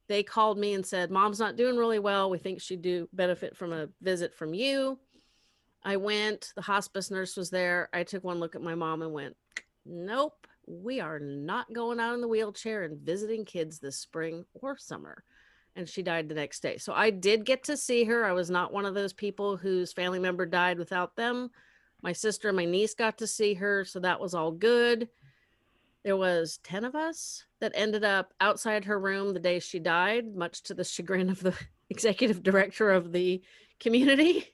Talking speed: 205 wpm